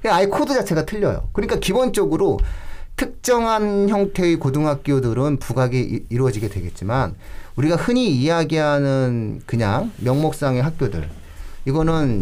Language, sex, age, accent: Korean, male, 40-59, native